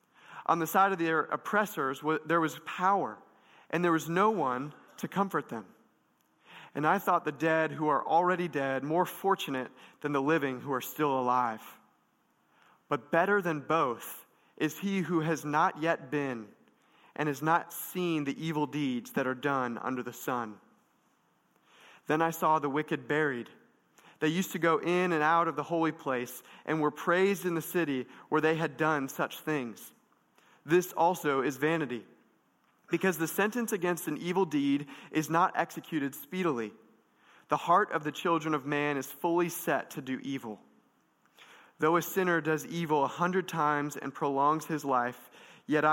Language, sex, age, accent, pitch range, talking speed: English, male, 30-49, American, 140-170 Hz, 170 wpm